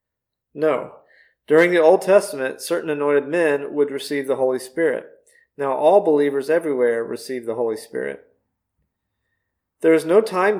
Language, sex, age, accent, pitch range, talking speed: English, male, 40-59, American, 140-210 Hz, 140 wpm